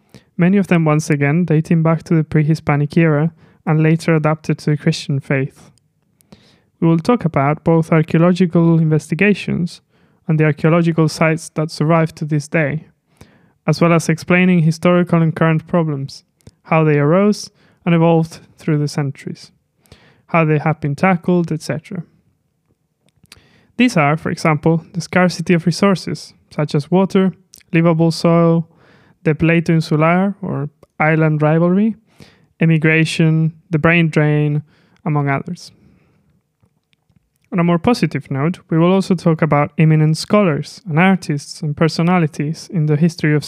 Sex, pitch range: male, 155-175 Hz